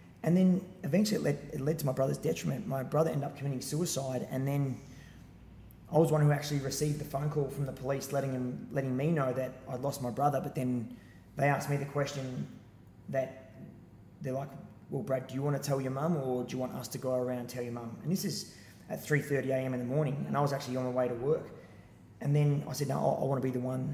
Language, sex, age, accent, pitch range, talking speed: English, male, 20-39, Australian, 125-145 Hz, 255 wpm